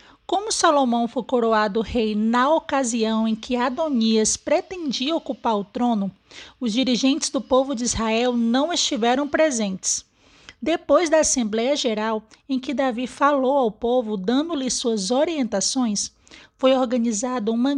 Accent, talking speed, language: Brazilian, 130 wpm, Portuguese